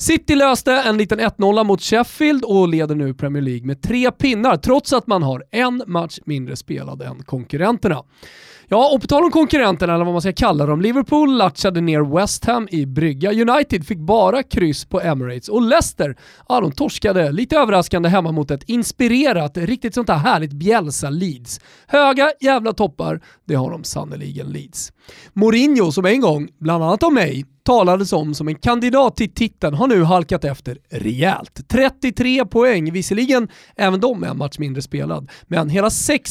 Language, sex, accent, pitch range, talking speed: Swedish, male, native, 155-240 Hz, 180 wpm